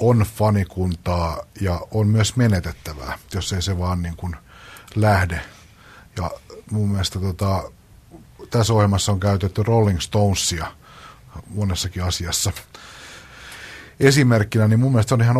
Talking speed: 115 wpm